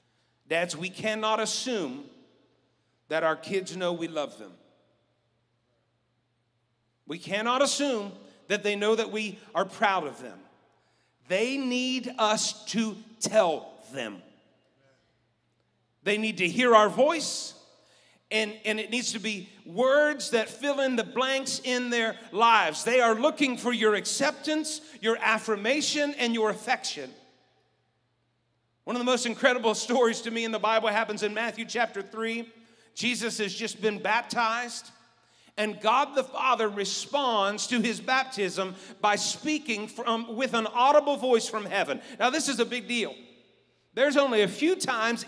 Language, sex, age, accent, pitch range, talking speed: English, male, 40-59, American, 205-250 Hz, 145 wpm